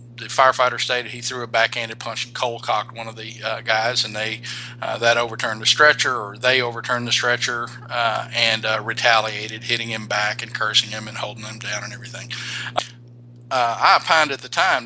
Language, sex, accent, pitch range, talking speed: English, male, American, 115-125 Hz, 200 wpm